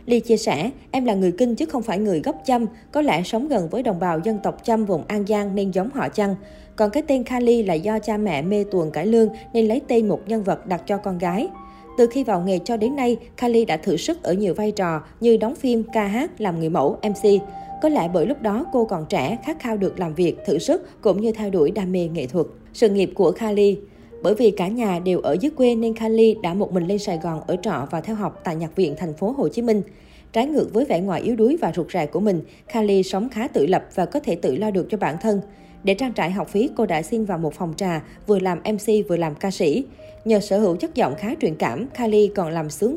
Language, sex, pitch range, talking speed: Vietnamese, female, 185-230 Hz, 265 wpm